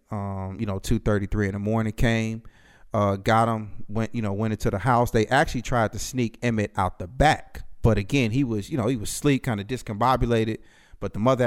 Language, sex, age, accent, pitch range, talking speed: English, male, 30-49, American, 100-115 Hz, 220 wpm